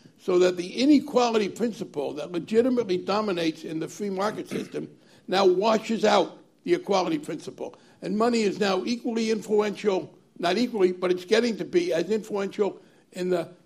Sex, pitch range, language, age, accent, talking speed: male, 180-220 Hz, English, 60-79, American, 160 wpm